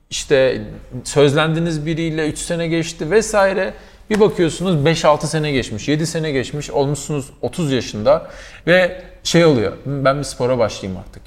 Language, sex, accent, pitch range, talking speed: Turkish, male, native, 110-145 Hz, 140 wpm